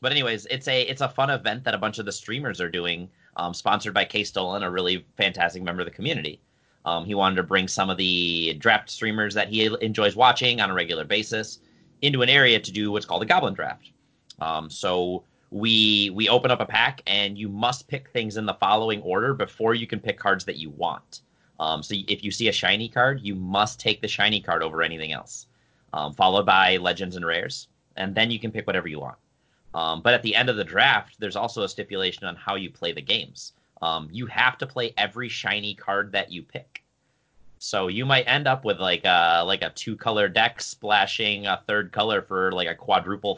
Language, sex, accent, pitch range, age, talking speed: English, male, American, 95-125 Hz, 30-49, 225 wpm